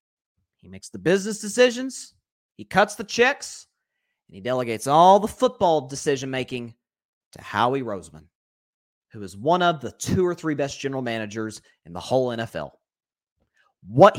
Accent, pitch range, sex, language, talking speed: American, 140-220 Hz, male, English, 150 wpm